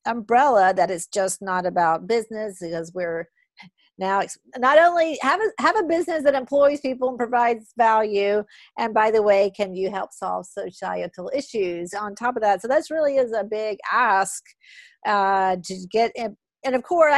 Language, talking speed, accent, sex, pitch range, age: English, 175 wpm, American, female, 190-240 Hz, 50-69